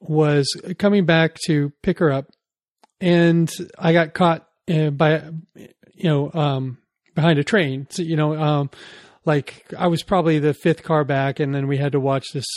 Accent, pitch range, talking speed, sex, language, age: American, 140-170 Hz, 175 wpm, male, English, 30-49